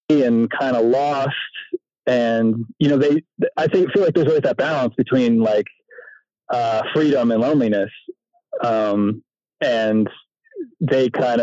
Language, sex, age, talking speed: English, male, 30-49, 135 wpm